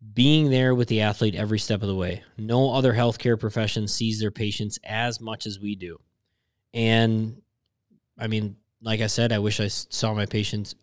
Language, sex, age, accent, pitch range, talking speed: English, male, 20-39, American, 100-115 Hz, 190 wpm